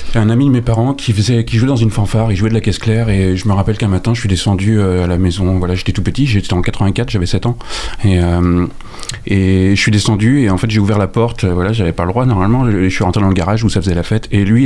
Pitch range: 95-110 Hz